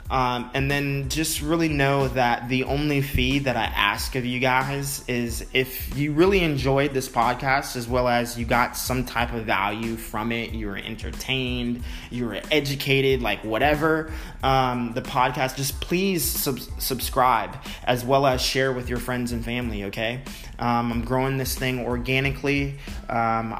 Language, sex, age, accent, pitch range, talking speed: English, male, 20-39, American, 115-130 Hz, 165 wpm